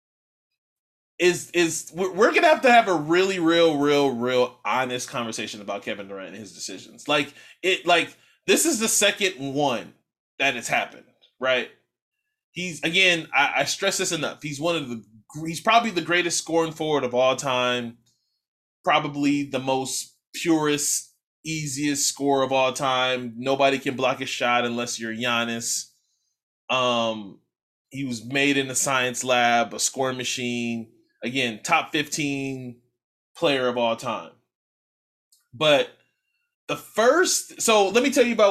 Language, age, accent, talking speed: English, 20-39, American, 150 wpm